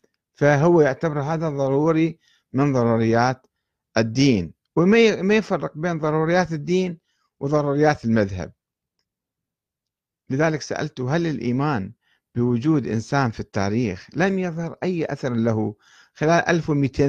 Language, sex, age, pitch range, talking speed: Arabic, male, 50-69, 120-165 Hz, 100 wpm